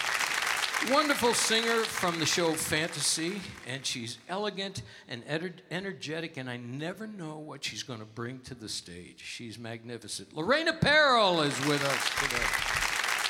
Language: English